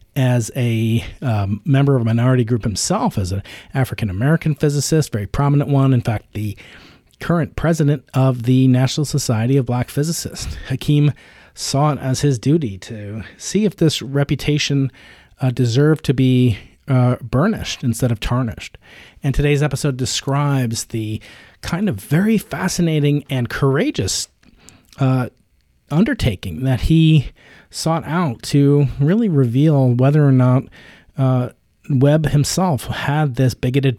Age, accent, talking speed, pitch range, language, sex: 40-59, American, 135 wpm, 115-140 Hz, English, male